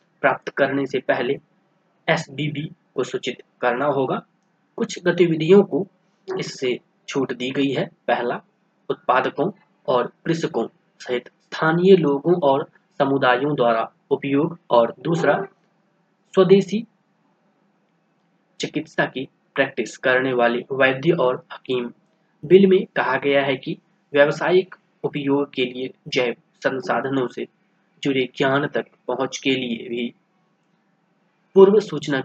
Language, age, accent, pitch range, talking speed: Hindi, 20-39, native, 135-185 Hz, 115 wpm